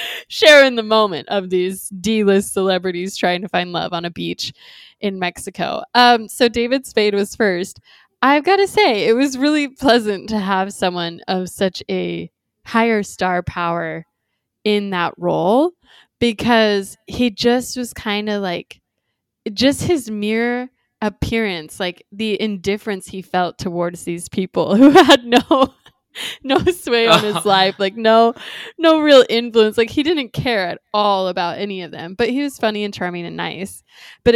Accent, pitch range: American, 185-240 Hz